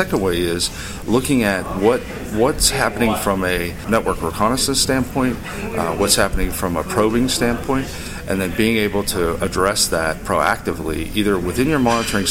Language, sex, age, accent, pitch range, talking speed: English, male, 40-59, American, 90-115 Hz, 160 wpm